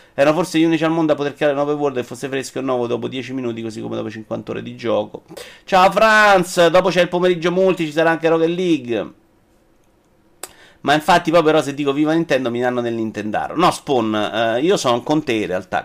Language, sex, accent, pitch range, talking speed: Italian, male, native, 115-165 Hz, 225 wpm